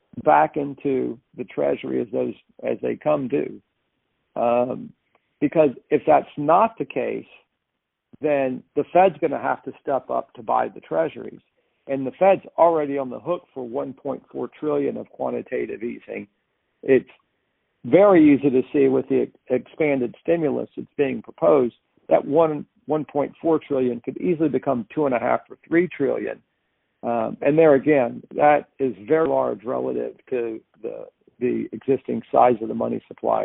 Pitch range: 125-150 Hz